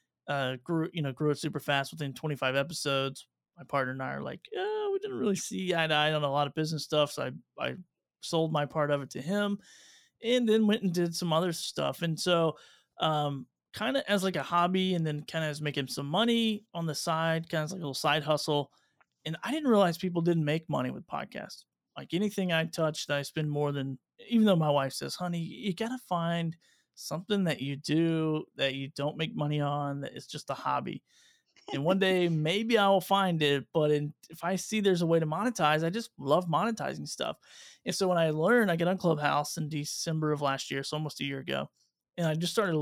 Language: English